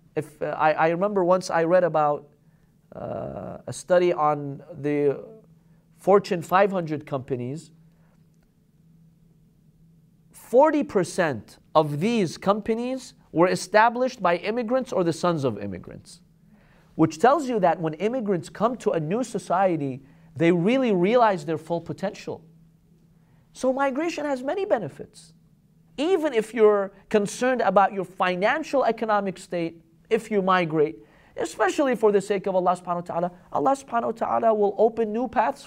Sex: male